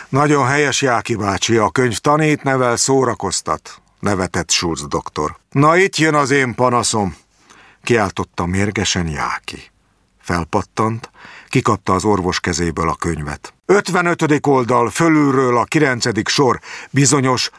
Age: 50-69